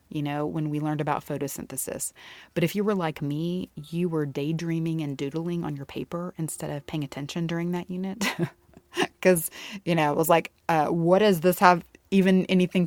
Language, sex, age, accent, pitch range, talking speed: English, female, 30-49, American, 150-185 Hz, 190 wpm